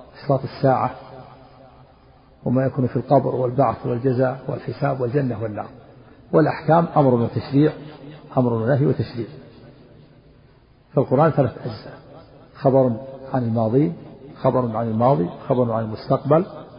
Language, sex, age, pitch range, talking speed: Arabic, male, 50-69, 125-150 Hz, 105 wpm